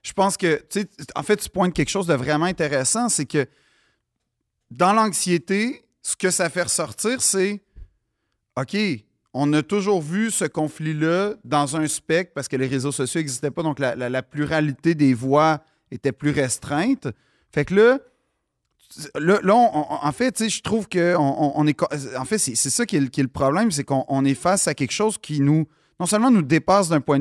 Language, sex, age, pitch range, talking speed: French, male, 30-49, 135-180 Hz, 210 wpm